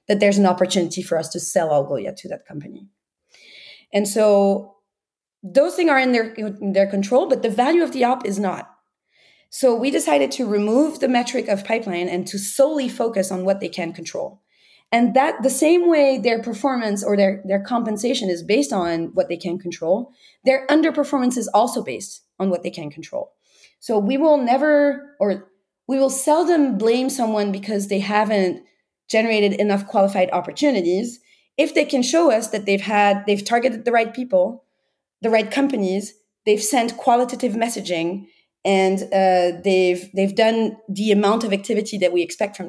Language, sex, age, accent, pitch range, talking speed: English, female, 30-49, Canadian, 195-255 Hz, 175 wpm